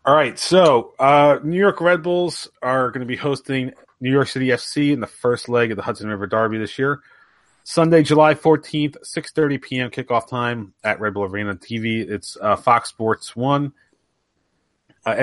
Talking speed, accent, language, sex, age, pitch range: 180 wpm, American, English, male, 30-49, 110-140 Hz